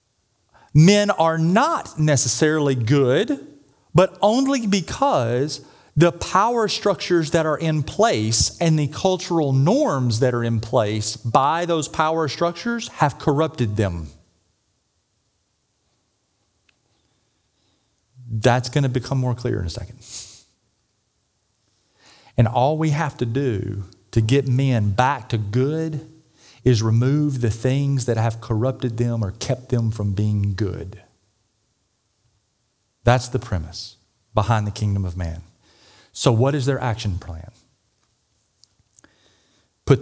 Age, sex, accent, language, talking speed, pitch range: 40-59, male, American, English, 120 wpm, 105-140 Hz